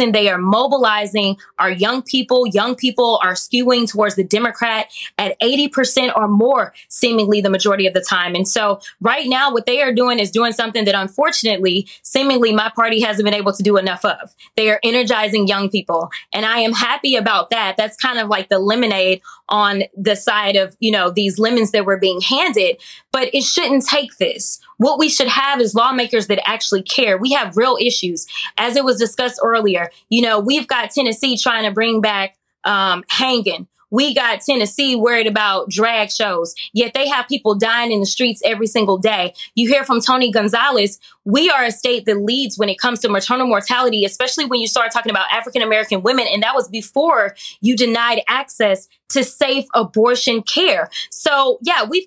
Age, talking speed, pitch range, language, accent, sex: 20-39, 190 wpm, 210-255 Hz, English, American, female